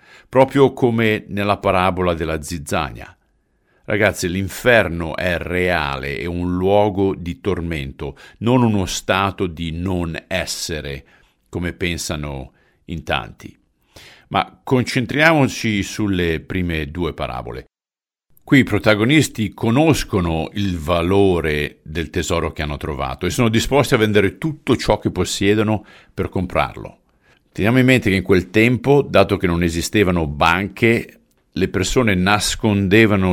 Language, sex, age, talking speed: Italian, male, 50-69, 120 wpm